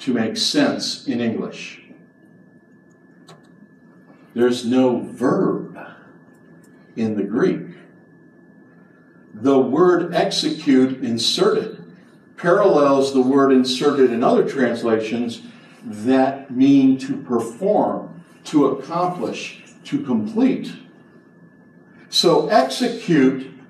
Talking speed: 80 wpm